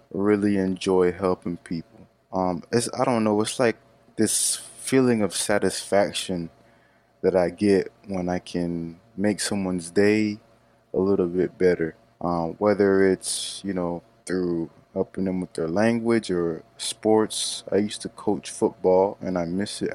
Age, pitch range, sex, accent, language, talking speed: 20-39, 90-110 Hz, male, American, English, 150 wpm